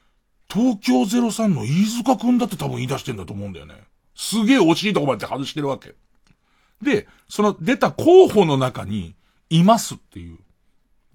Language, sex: Japanese, male